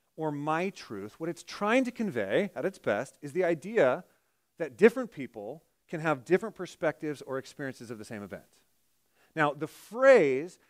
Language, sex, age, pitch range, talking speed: English, male, 30-49, 125-185 Hz, 170 wpm